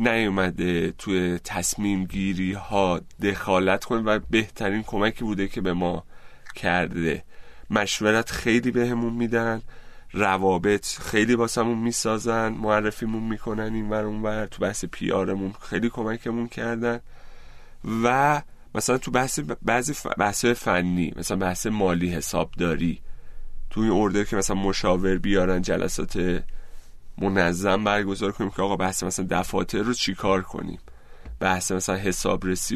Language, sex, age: Persian, male, 30-49